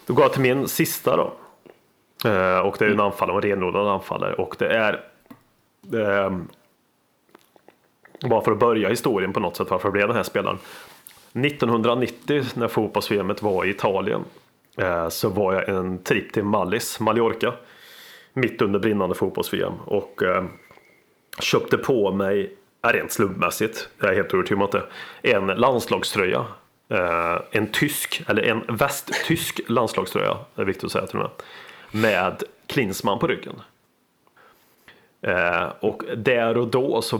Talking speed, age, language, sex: 145 wpm, 30-49, Swedish, male